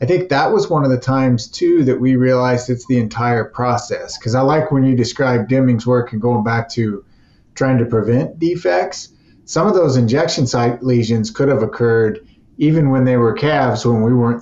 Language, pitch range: English, 115-135 Hz